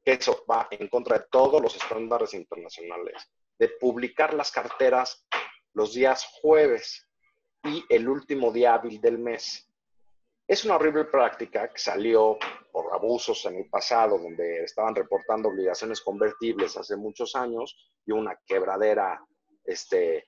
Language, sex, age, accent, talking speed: Spanish, male, 40-59, Mexican, 135 wpm